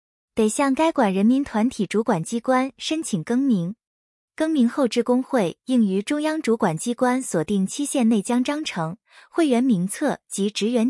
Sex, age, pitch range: female, 20-39, 205-275 Hz